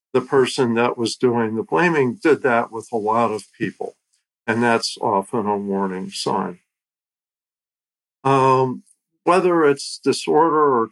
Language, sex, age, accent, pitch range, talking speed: English, male, 50-69, American, 110-145 Hz, 135 wpm